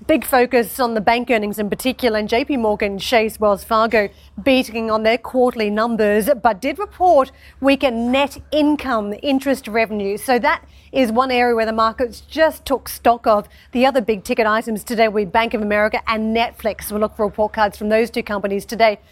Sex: female